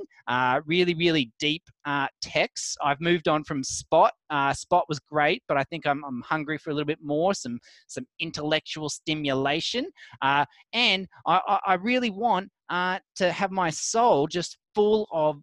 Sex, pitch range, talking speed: male, 145-190 Hz, 175 wpm